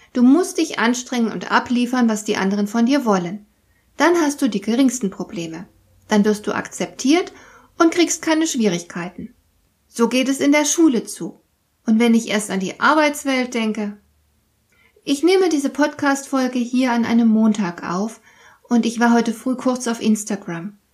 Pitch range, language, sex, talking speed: 205-255 Hz, German, female, 165 wpm